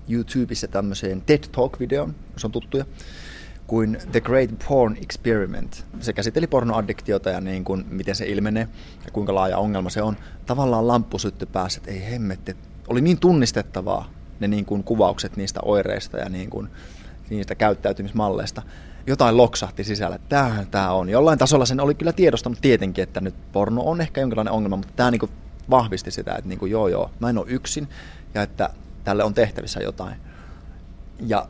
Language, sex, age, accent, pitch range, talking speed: Finnish, male, 20-39, native, 95-115 Hz, 165 wpm